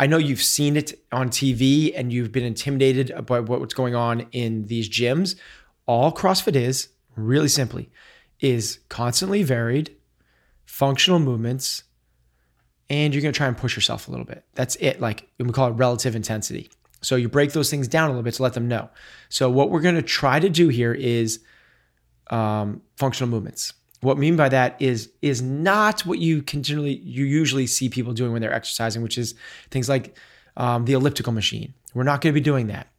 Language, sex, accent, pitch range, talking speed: English, male, American, 120-145 Hz, 190 wpm